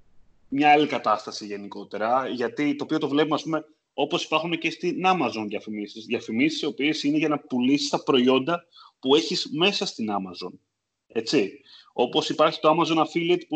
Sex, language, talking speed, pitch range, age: male, Greek, 170 wpm, 115-155 Hz, 30-49